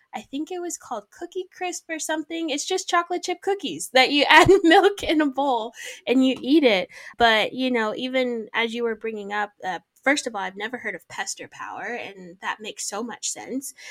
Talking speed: 220 wpm